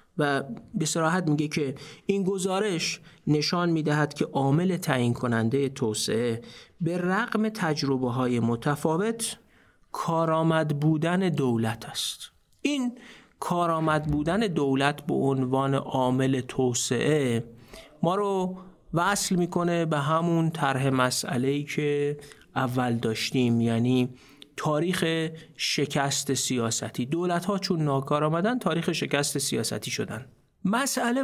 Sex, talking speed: male, 105 wpm